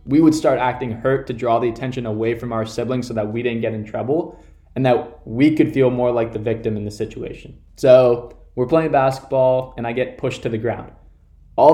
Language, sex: English, male